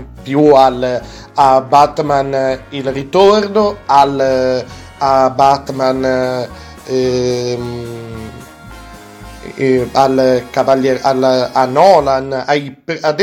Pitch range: 130-160 Hz